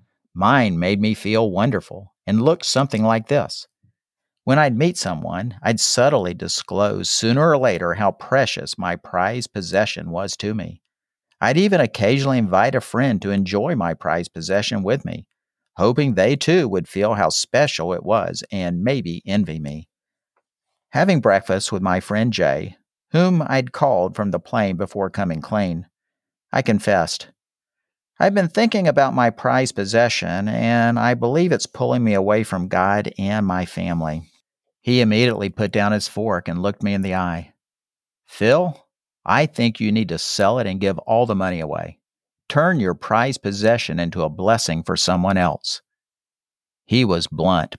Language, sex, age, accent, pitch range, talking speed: English, male, 50-69, American, 95-115 Hz, 160 wpm